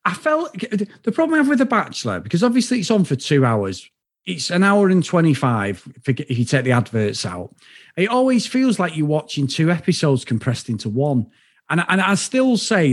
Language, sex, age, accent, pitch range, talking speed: English, male, 30-49, British, 130-205 Hz, 200 wpm